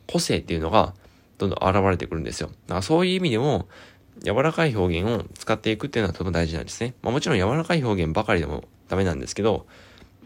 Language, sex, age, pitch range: Japanese, male, 20-39, 85-105 Hz